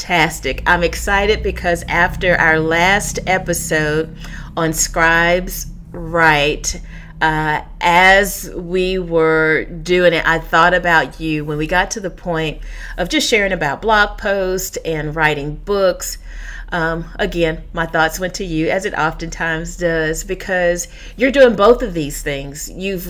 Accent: American